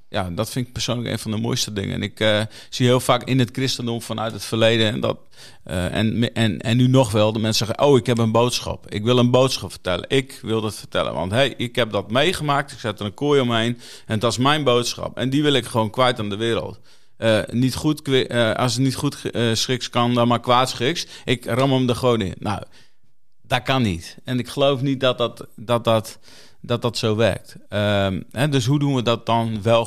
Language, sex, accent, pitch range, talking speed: Dutch, male, Dutch, 110-125 Hz, 225 wpm